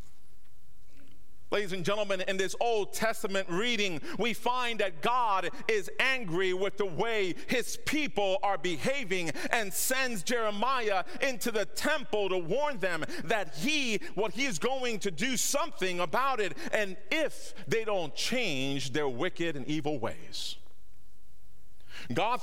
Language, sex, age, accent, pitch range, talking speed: English, male, 40-59, American, 180-245 Hz, 140 wpm